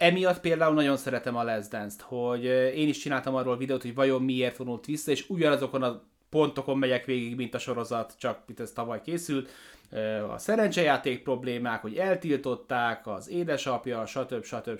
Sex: male